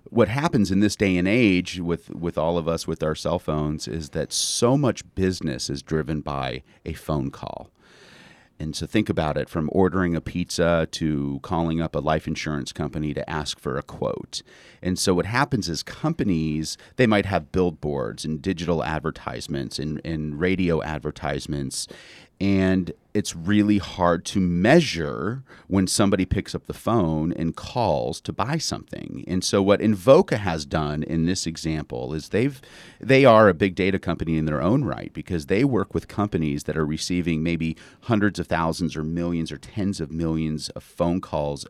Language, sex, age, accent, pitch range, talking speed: English, male, 40-59, American, 80-95 Hz, 180 wpm